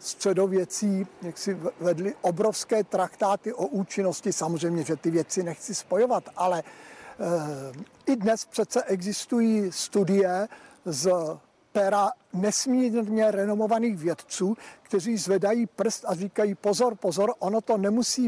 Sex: male